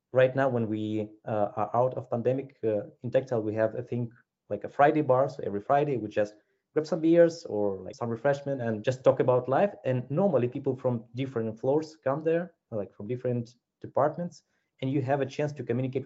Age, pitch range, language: 20-39, 115-155 Hz, English